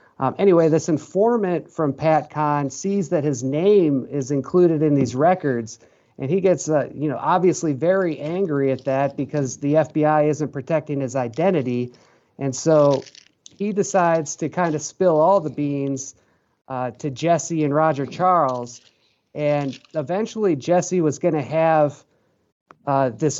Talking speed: 155 wpm